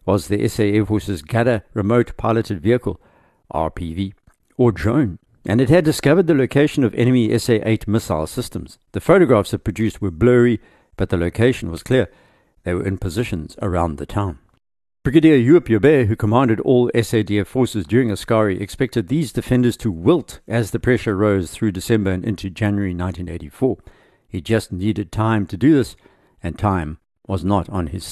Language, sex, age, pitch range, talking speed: English, male, 60-79, 95-125 Hz, 170 wpm